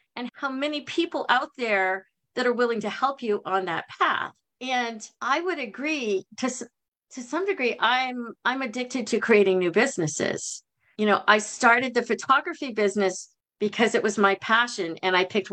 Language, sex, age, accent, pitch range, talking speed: English, female, 50-69, American, 190-240 Hz, 175 wpm